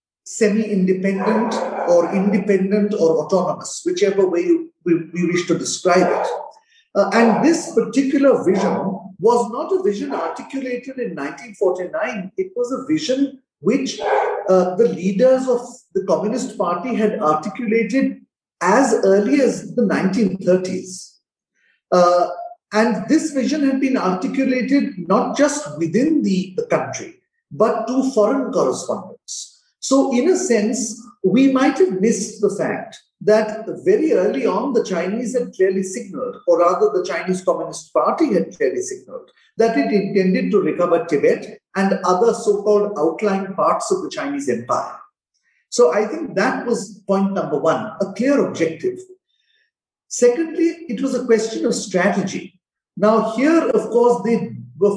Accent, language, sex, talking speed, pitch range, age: Indian, English, male, 140 wpm, 195-270 Hz, 50-69